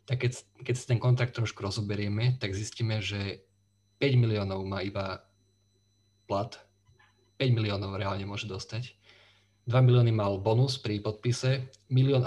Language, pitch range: Slovak, 100-115 Hz